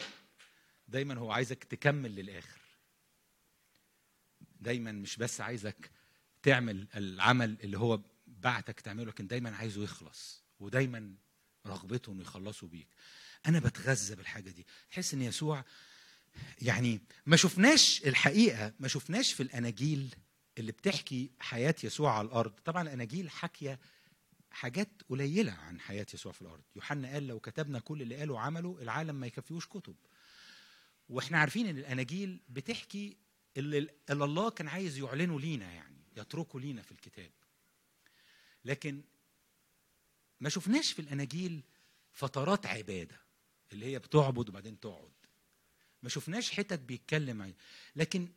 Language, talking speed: English, 125 wpm